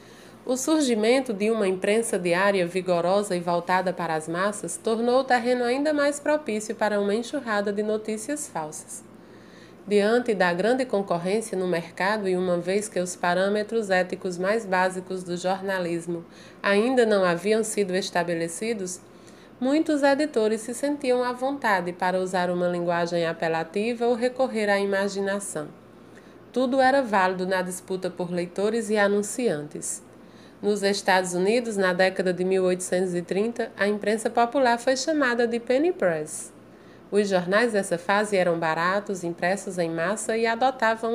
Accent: Brazilian